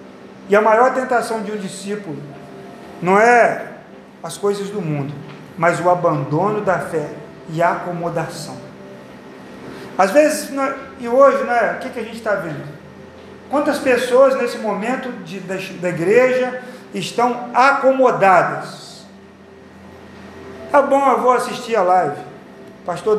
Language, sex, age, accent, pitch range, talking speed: Portuguese, male, 40-59, Brazilian, 175-265 Hz, 140 wpm